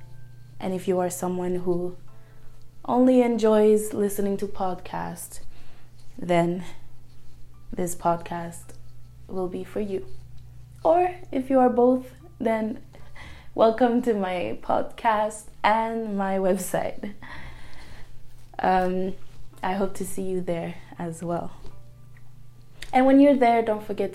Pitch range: 120-200 Hz